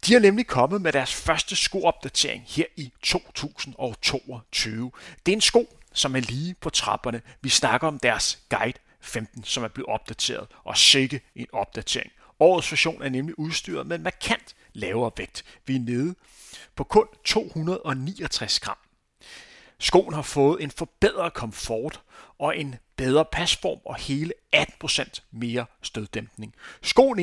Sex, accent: male, native